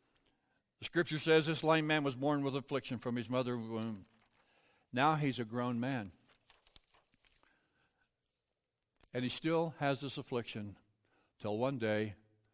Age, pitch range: 60-79, 115-170 Hz